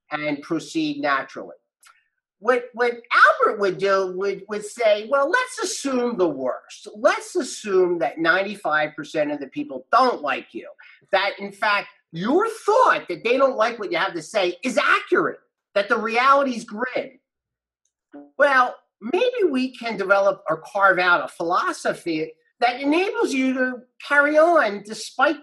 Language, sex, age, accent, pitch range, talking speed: English, male, 40-59, American, 180-280 Hz, 150 wpm